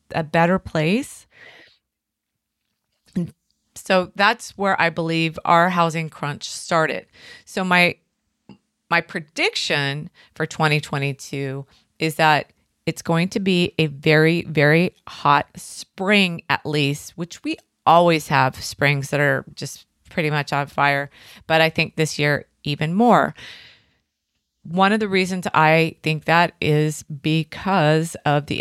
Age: 30-49